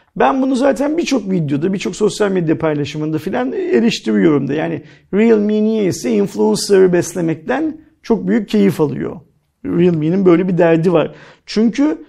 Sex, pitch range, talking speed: male, 165-215 Hz, 135 wpm